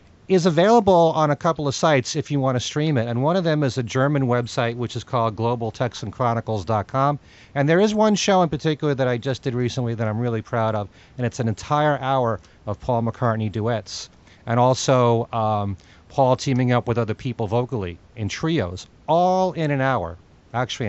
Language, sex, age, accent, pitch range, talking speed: English, male, 40-59, American, 105-140 Hz, 200 wpm